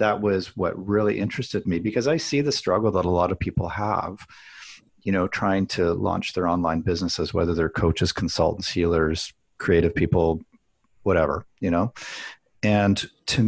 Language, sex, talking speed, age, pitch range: English, male, 165 wpm, 40-59, 90-115 Hz